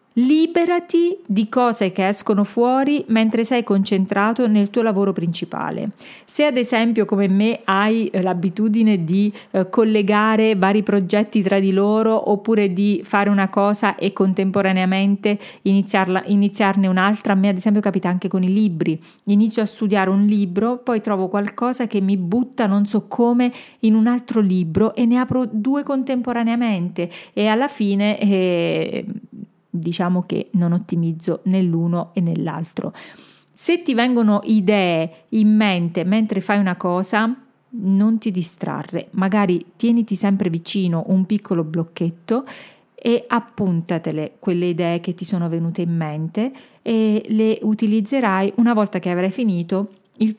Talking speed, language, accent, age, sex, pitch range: 140 wpm, Italian, native, 40-59, female, 185-225 Hz